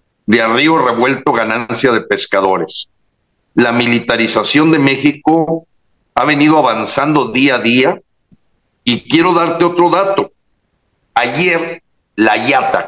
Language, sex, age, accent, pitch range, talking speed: Spanish, male, 50-69, Mexican, 135-190 Hz, 110 wpm